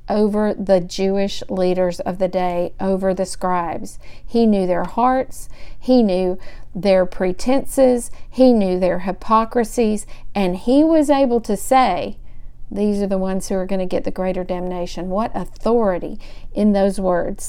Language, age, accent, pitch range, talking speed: English, 50-69, American, 190-230 Hz, 155 wpm